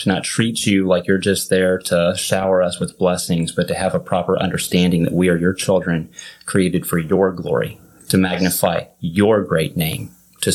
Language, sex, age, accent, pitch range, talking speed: English, male, 30-49, American, 90-105 Hz, 195 wpm